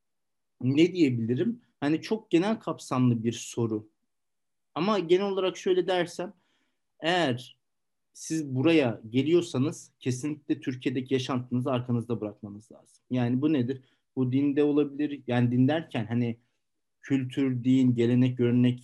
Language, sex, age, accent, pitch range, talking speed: Turkish, male, 50-69, native, 120-160 Hz, 120 wpm